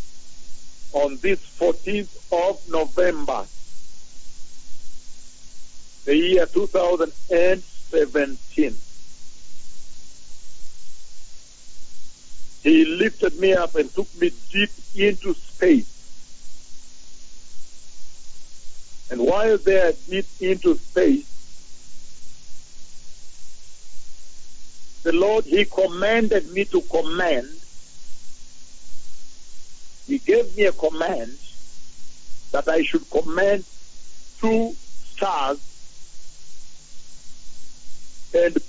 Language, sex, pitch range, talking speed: English, male, 140-215 Hz, 65 wpm